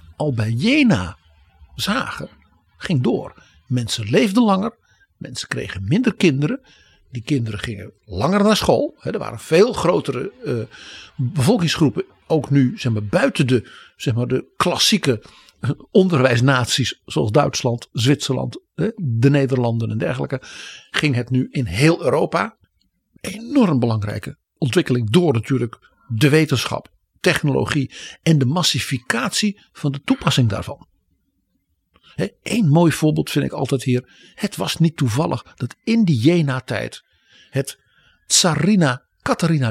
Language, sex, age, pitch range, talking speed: Dutch, male, 60-79, 120-175 Hz, 125 wpm